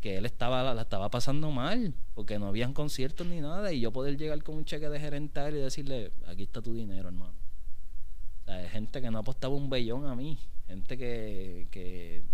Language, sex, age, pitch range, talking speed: Spanish, male, 30-49, 110-150 Hz, 210 wpm